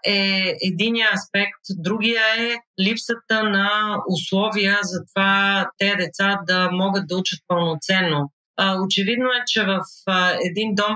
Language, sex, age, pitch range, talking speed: Bulgarian, female, 30-49, 175-200 Hz, 125 wpm